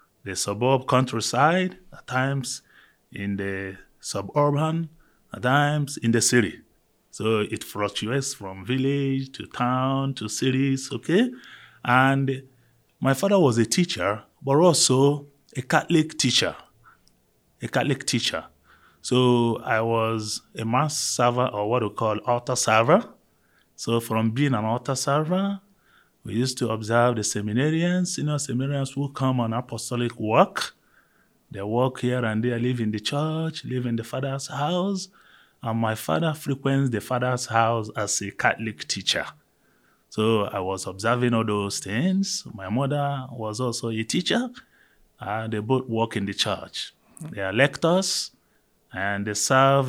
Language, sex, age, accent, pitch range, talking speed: English, male, 30-49, Nigerian, 110-140 Hz, 145 wpm